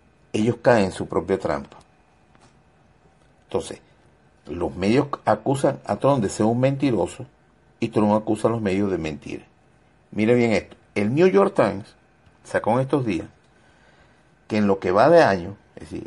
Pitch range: 105-150 Hz